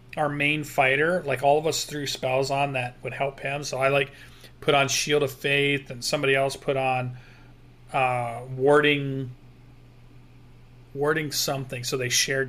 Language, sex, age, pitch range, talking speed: English, male, 40-59, 130-155 Hz, 165 wpm